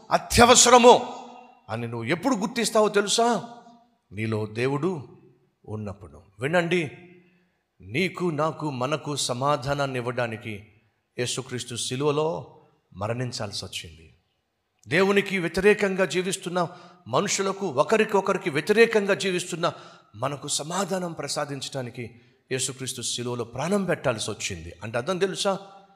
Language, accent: Telugu, native